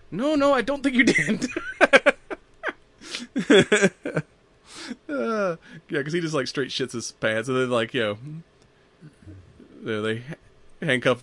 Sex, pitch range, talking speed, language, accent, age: male, 110-140 Hz, 125 wpm, English, American, 30-49